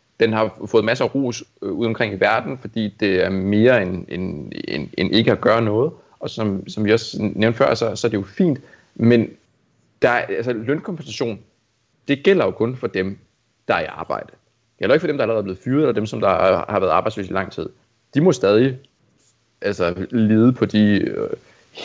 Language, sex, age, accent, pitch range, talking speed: Danish, male, 30-49, native, 105-135 Hz, 215 wpm